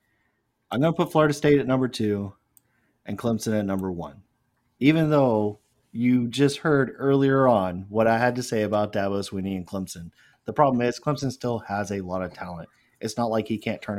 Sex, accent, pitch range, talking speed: male, American, 100-130 Hz, 200 wpm